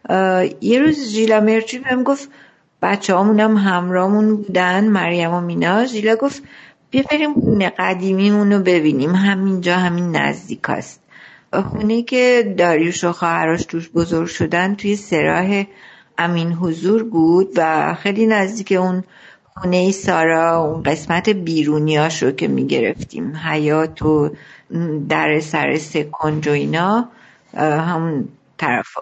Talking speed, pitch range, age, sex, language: 120 wpm, 170-210 Hz, 50-69, female, Persian